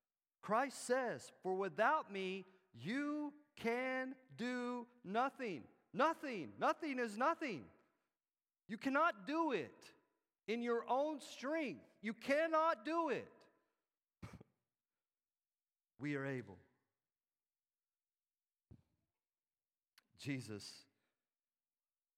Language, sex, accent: English, male, American